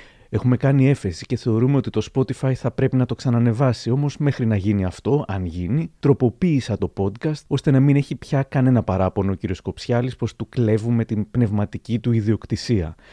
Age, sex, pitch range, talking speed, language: 30-49, male, 105-130 Hz, 185 wpm, Greek